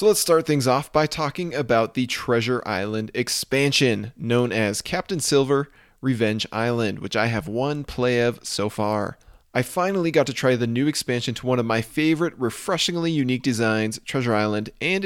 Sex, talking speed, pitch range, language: male, 180 wpm, 115-155 Hz, English